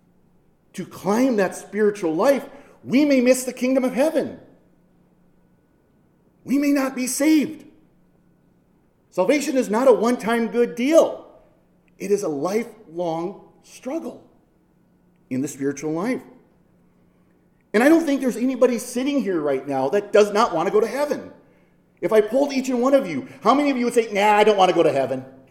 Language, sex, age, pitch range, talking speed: English, male, 40-59, 175-260 Hz, 170 wpm